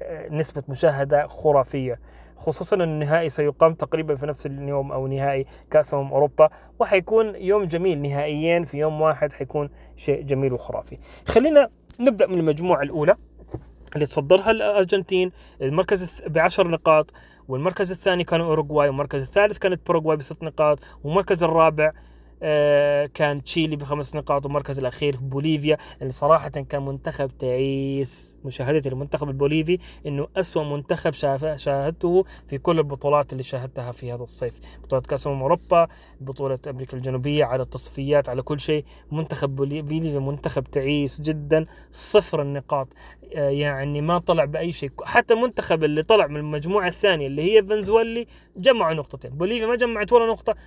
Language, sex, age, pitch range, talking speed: Arabic, male, 20-39, 140-175 Hz, 135 wpm